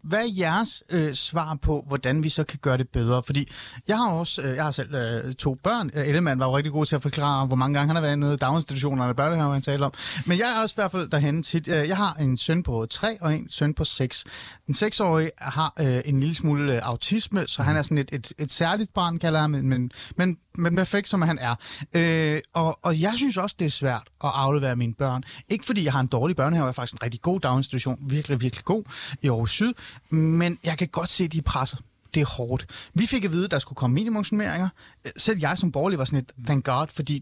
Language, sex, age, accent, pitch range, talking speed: Danish, male, 30-49, native, 135-180 Hz, 255 wpm